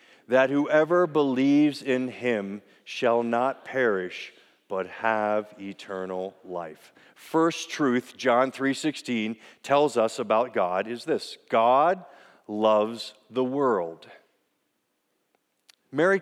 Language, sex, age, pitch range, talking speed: English, male, 40-59, 120-175 Hz, 105 wpm